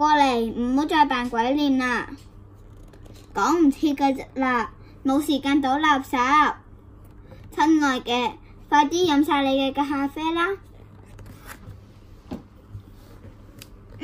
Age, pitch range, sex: 10-29, 215-300 Hz, male